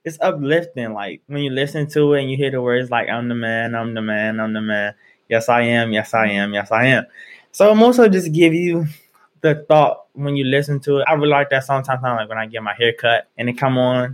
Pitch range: 115-140 Hz